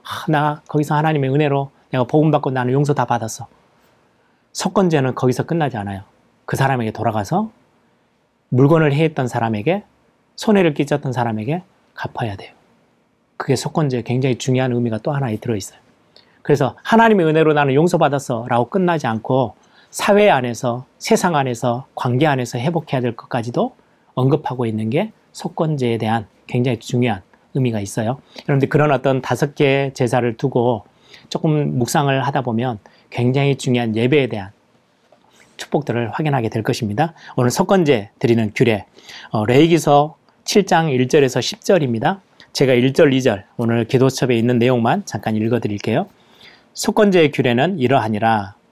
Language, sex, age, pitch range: Korean, male, 30-49, 120-155 Hz